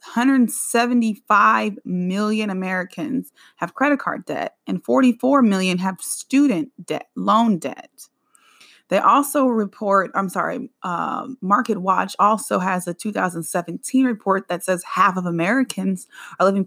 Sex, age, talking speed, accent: female, 30-49, 125 wpm, American